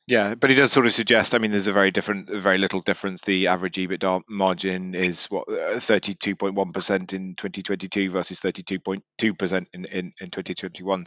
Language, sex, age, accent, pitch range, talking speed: English, male, 30-49, British, 95-100 Hz, 170 wpm